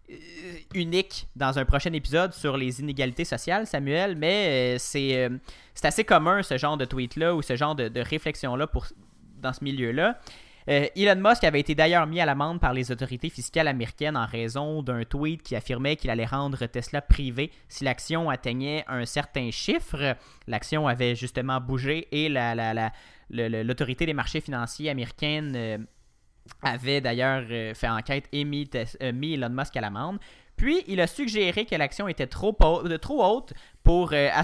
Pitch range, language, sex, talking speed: 125-155 Hz, French, male, 175 wpm